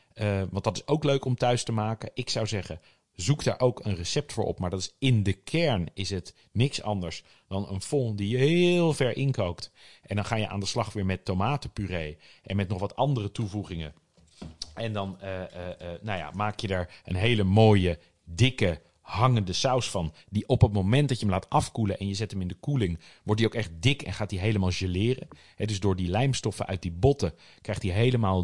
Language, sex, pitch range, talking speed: Dutch, male, 90-120 Hz, 220 wpm